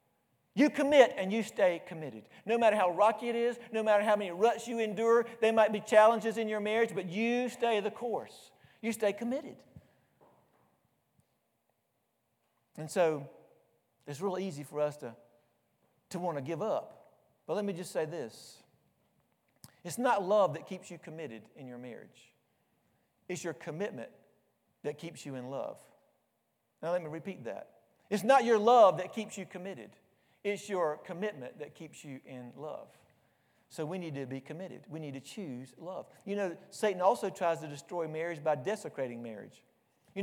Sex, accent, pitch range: male, American, 165-225 Hz